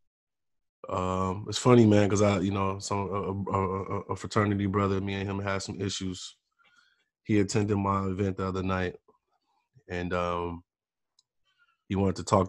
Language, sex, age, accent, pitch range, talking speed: English, male, 20-39, American, 90-100 Hz, 155 wpm